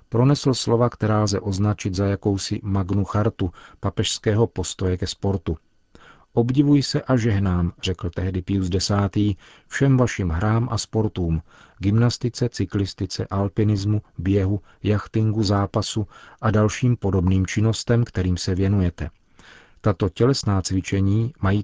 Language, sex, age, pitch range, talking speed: Czech, male, 40-59, 95-115 Hz, 115 wpm